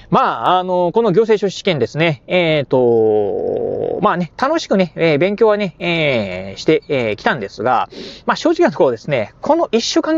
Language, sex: Japanese, male